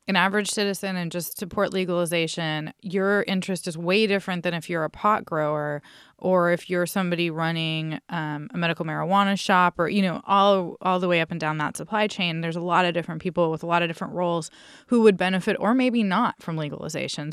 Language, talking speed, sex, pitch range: English, 210 wpm, female, 165-200 Hz